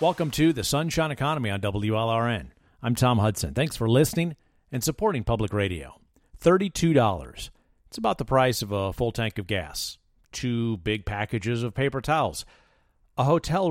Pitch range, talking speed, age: 105-145 Hz, 160 wpm, 50-69